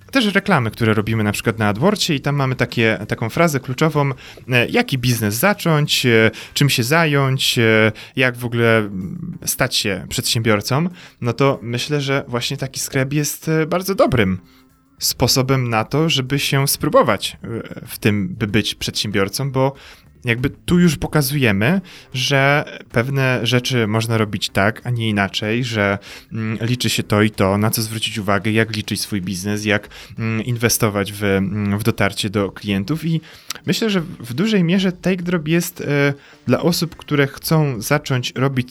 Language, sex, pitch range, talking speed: Polish, male, 110-140 Hz, 150 wpm